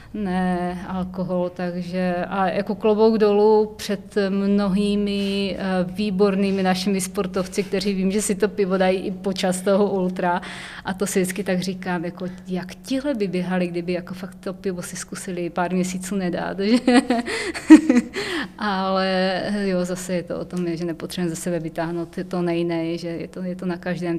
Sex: female